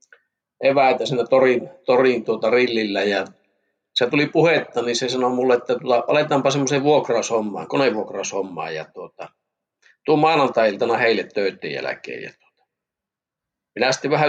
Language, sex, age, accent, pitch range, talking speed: Finnish, male, 50-69, native, 105-140 Hz, 125 wpm